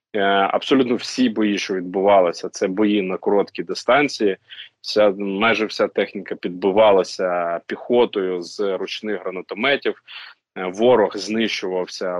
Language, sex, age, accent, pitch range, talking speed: Ukrainian, male, 20-39, native, 90-105 Hz, 105 wpm